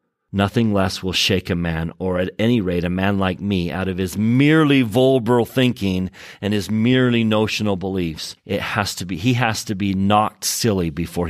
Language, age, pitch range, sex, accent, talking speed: English, 40-59, 85-115 Hz, male, American, 190 wpm